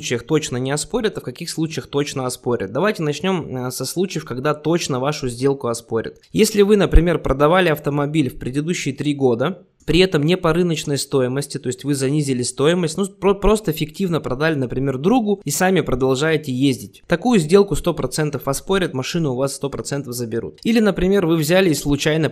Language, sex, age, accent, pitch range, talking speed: Russian, male, 20-39, native, 130-170 Hz, 170 wpm